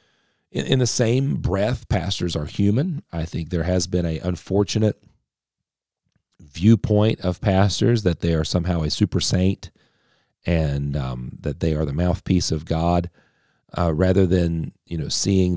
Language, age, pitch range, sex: English, 40-59, 85-105 Hz, male